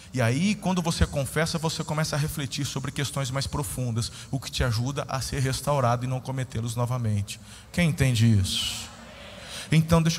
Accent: Brazilian